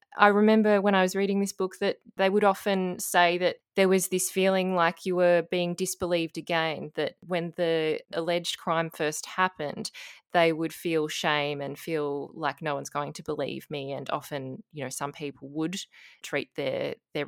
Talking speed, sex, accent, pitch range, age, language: 190 wpm, female, Australian, 150-180 Hz, 20-39, English